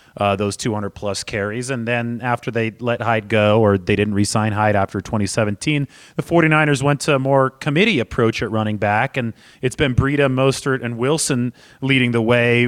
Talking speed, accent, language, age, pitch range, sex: 190 wpm, American, English, 30-49, 110-135 Hz, male